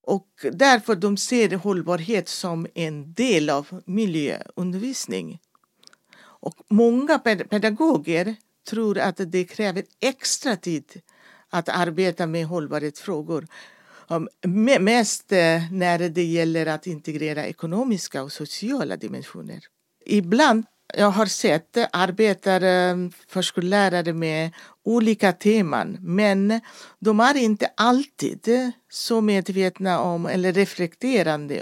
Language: Swedish